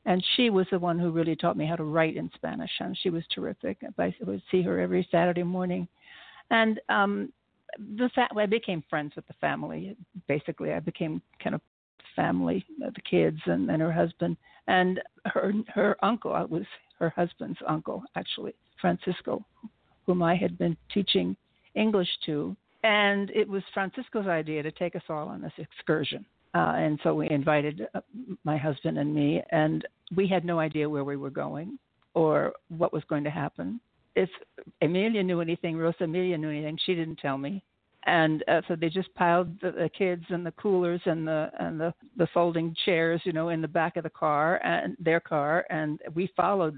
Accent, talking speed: American, 190 wpm